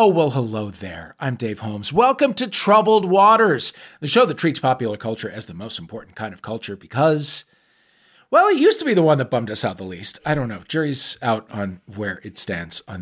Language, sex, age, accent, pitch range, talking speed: English, male, 40-59, American, 105-155 Hz, 220 wpm